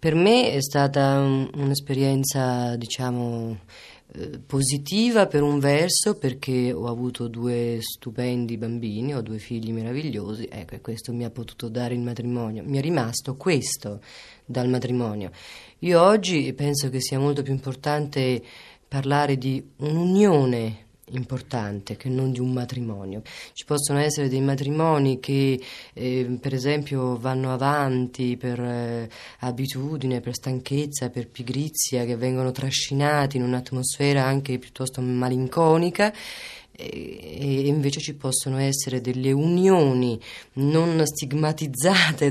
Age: 30-49